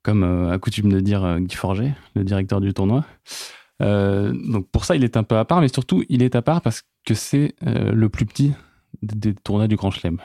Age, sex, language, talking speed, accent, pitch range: 20-39, male, French, 220 wpm, French, 95-120 Hz